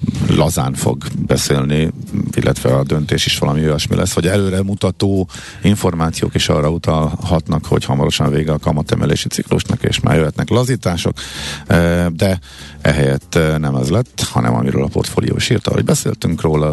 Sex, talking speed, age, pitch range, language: male, 145 wpm, 50-69, 80-100 Hz, Hungarian